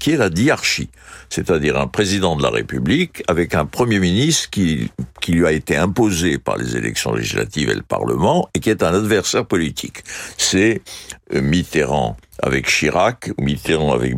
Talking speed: 170 wpm